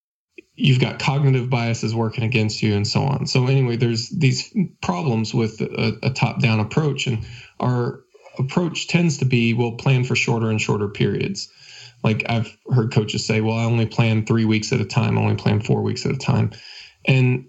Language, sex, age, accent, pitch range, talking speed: English, male, 20-39, American, 105-130 Hz, 190 wpm